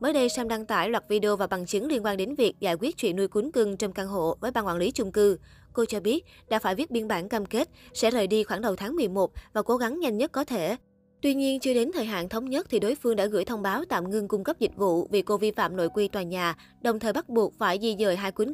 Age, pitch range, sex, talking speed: 20-39, 195-235 Hz, female, 295 wpm